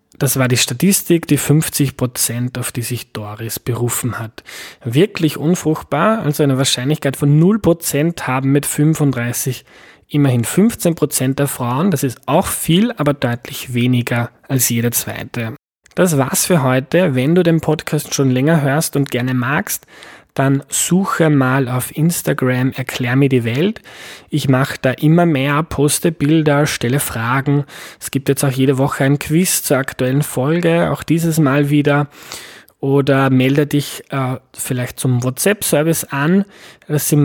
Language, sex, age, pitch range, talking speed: German, male, 20-39, 130-155 Hz, 150 wpm